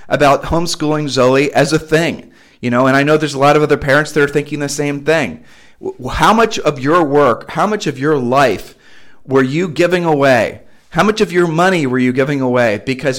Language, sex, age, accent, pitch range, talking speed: English, male, 40-59, American, 130-165 Hz, 215 wpm